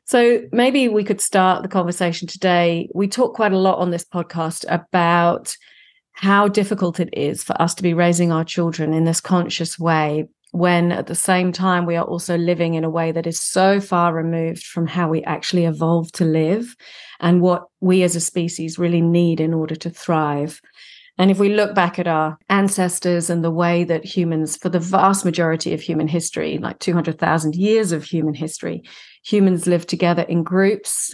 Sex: female